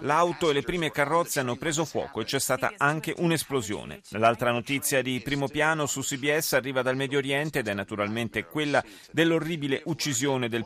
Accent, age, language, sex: native, 30-49, Italian, male